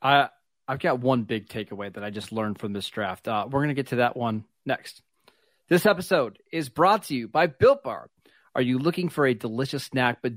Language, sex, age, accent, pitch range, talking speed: English, male, 30-49, American, 125-155 Hz, 225 wpm